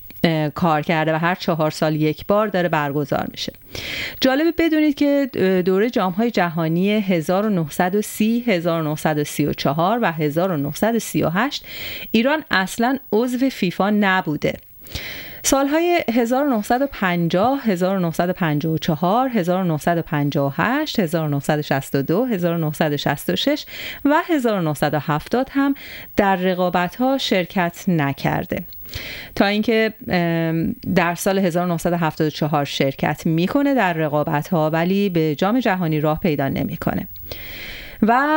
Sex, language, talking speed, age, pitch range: female, Persian, 90 wpm, 30-49, 155-225 Hz